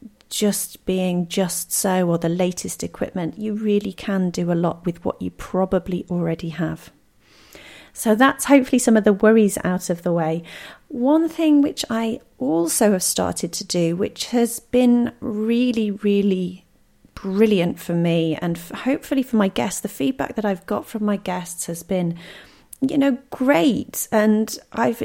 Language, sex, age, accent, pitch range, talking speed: English, female, 40-59, British, 185-250 Hz, 165 wpm